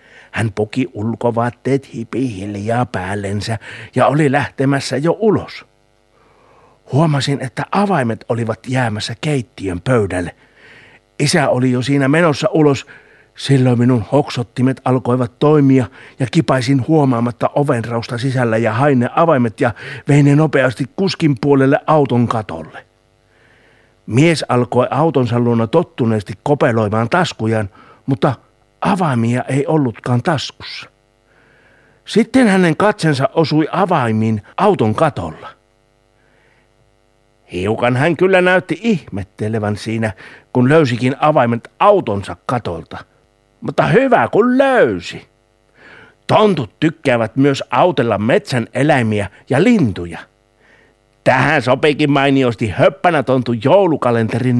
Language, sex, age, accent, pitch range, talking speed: Finnish, male, 60-79, native, 110-150 Hz, 100 wpm